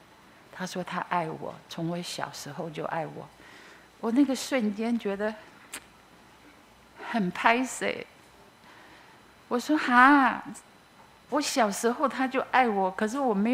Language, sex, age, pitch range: Chinese, female, 50-69, 195-255 Hz